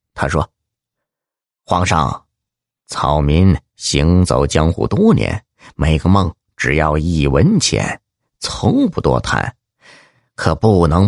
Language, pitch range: Chinese, 75-120 Hz